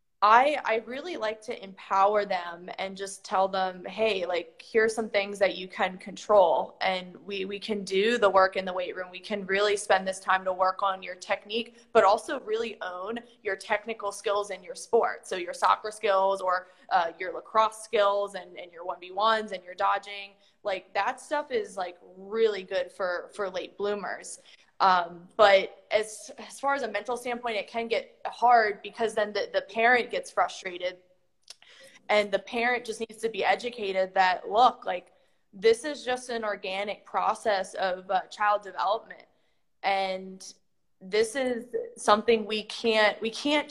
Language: English